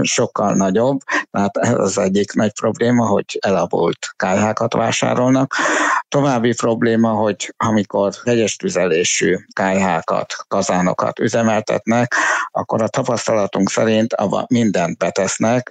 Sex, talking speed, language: male, 100 wpm, Hungarian